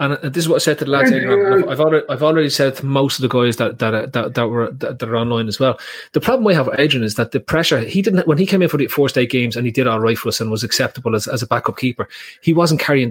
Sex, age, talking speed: male, 30-49, 310 wpm